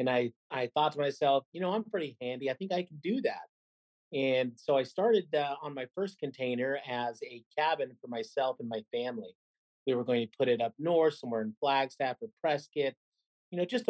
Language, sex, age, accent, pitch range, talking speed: English, male, 40-59, American, 130-155 Hz, 215 wpm